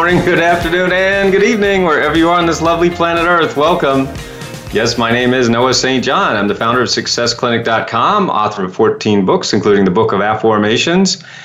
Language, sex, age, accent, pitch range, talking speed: English, male, 30-49, American, 110-160 Hz, 195 wpm